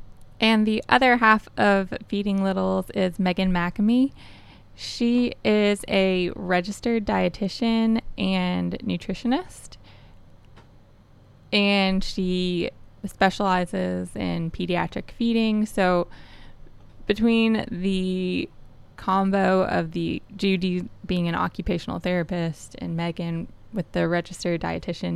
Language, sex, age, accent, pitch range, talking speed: English, female, 20-39, American, 175-210 Hz, 95 wpm